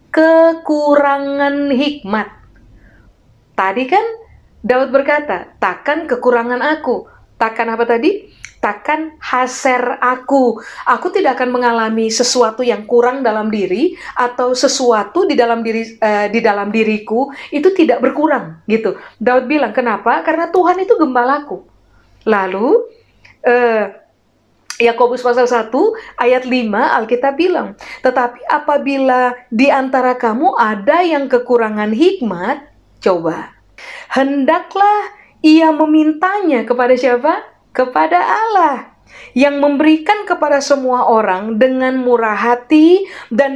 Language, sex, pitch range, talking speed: Indonesian, female, 235-310 Hz, 110 wpm